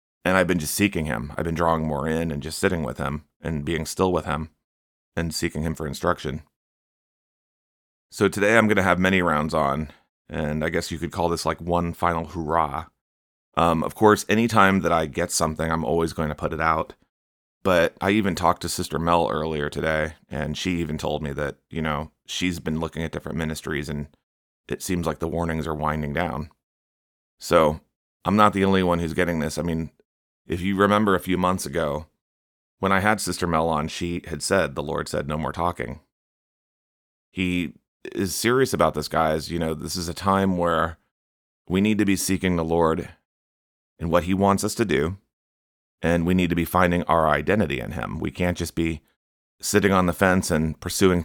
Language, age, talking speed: English, 30-49, 205 wpm